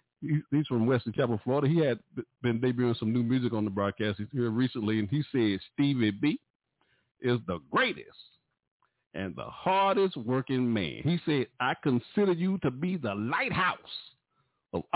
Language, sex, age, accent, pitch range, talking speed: English, male, 50-69, American, 110-180 Hz, 165 wpm